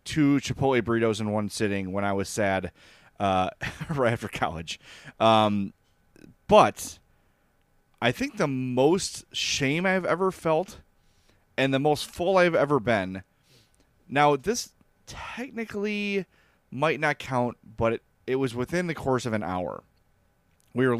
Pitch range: 105-145 Hz